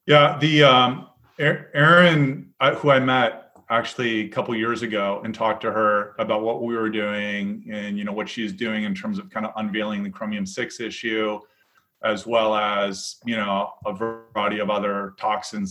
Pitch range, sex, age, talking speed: 105-130 Hz, male, 30-49, 180 wpm